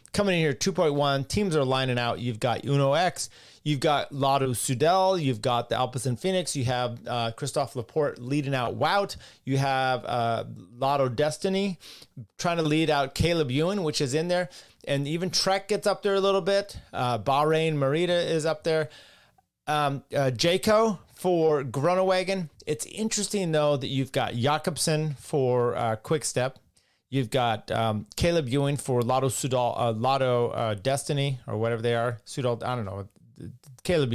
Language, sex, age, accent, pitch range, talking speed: English, male, 30-49, American, 120-155 Hz, 170 wpm